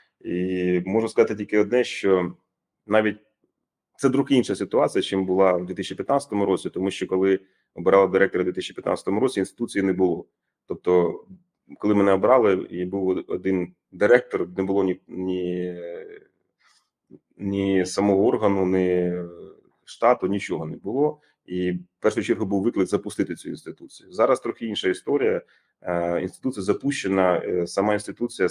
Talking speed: 135 wpm